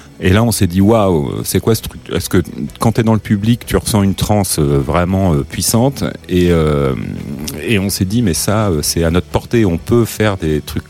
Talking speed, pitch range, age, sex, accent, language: 235 wpm, 80-105 Hz, 40-59, male, French, French